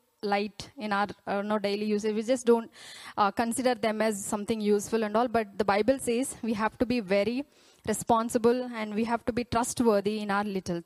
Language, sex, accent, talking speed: Telugu, female, native, 205 wpm